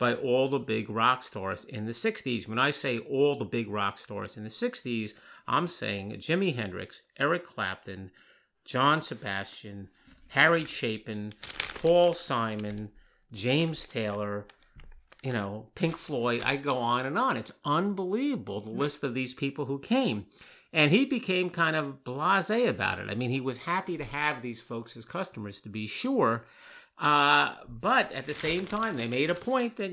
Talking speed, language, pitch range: 170 wpm, English, 115-170 Hz